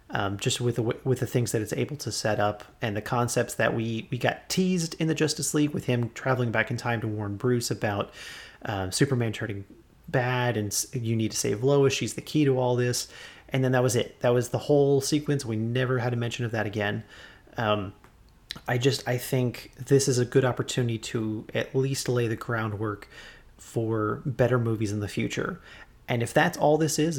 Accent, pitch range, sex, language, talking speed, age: American, 110-135 Hz, male, English, 210 wpm, 30-49